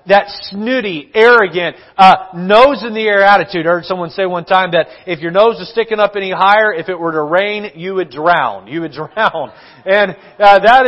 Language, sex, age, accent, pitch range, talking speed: English, male, 40-59, American, 170-205 Hz, 210 wpm